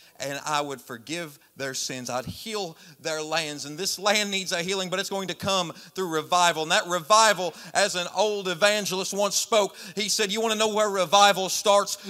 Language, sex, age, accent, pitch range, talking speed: English, male, 40-59, American, 190-230 Hz, 205 wpm